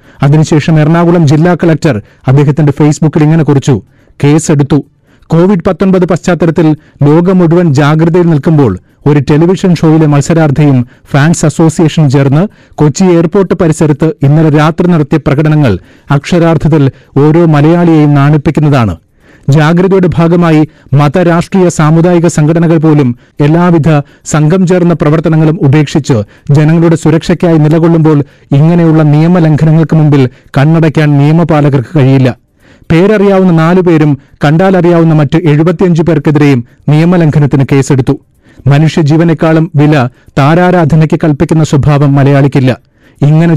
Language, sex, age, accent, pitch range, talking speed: Malayalam, male, 30-49, native, 140-165 Hz, 85 wpm